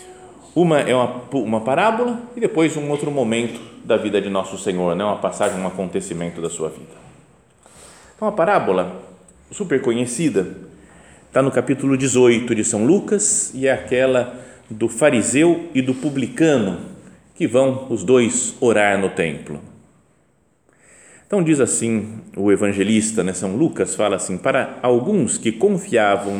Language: Portuguese